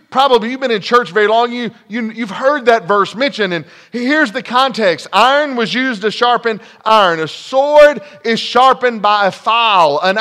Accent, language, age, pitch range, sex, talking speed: American, English, 40-59, 205-265 Hz, male, 175 wpm